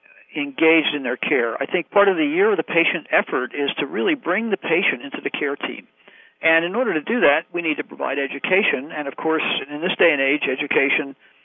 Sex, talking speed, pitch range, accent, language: male, 230 wpm, 140-170 Hz, American, English